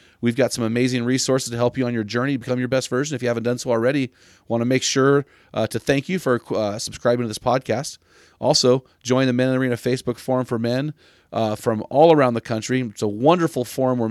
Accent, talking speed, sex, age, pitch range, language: American, 240 wpm, male, 30-49, 105-125 Hz, English